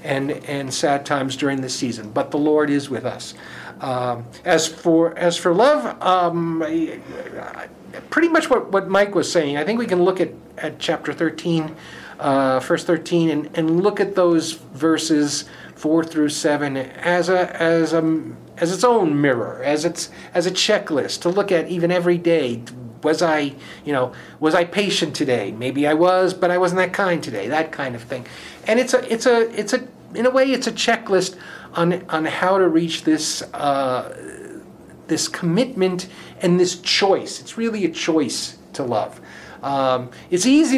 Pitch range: 150-185 Hz